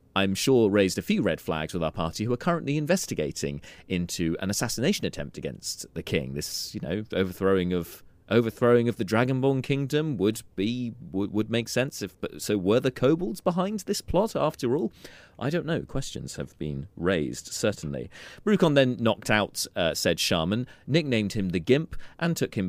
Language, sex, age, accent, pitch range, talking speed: English, male, 30-49, British, 85-120 Hz, 180 wpm